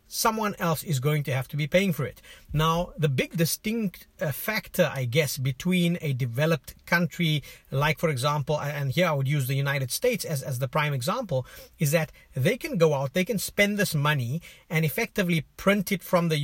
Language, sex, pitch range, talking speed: English, male, 140-180 Hz, 200 wpm